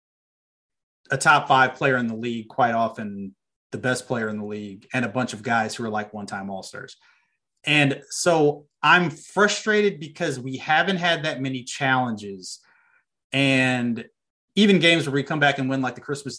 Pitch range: 110-135 Hz